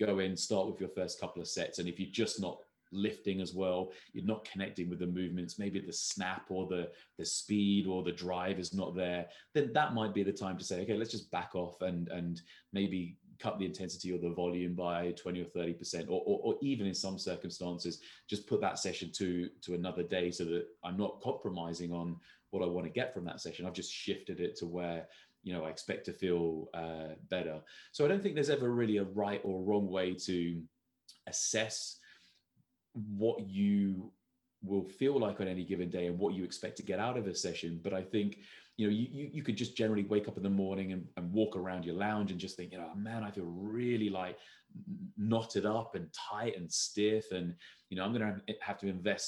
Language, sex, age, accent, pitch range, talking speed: English, male, 30-49, British, 90-105 Hz, 225 wpm